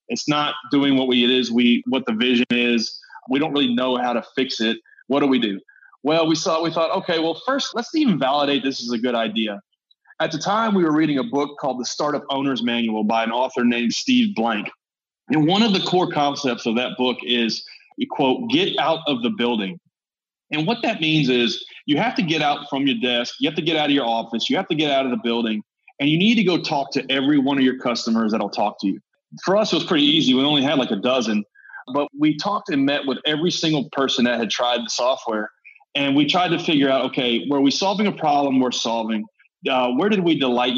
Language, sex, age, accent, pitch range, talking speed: English, male, 30-49, American, 120-160 Hz, 245 wpm